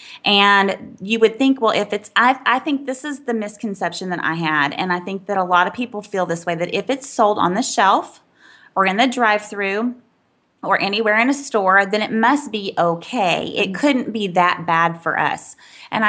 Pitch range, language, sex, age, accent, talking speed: 175-220 Hz, English, female, 20-39, American, 215 wpm